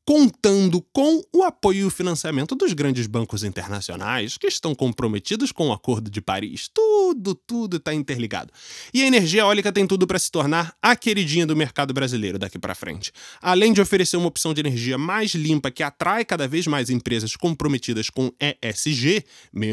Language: Portuguese